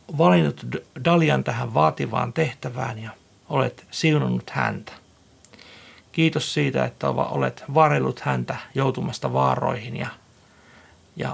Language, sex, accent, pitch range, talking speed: Finnish, male, native, 110-165 Hz, 100 wpm